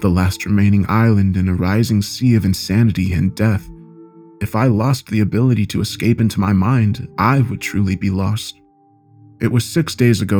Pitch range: 95-115 Hz